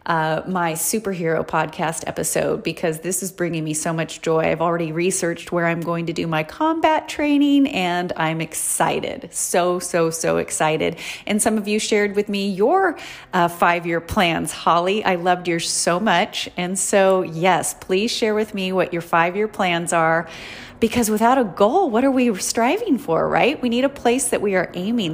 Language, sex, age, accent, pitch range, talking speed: English, female, 30-49, American, 170-215 Hz, 185 wpm